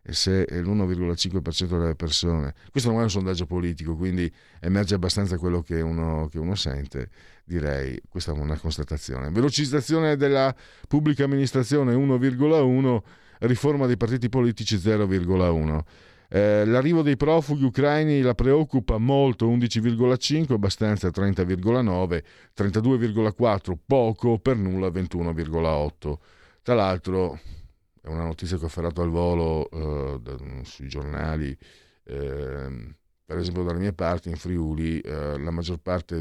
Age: 50-69